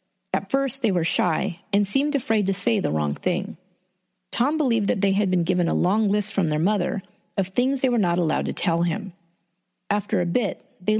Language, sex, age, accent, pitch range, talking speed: English, female, 40-59, American, 180-230 Hz, 215 wpm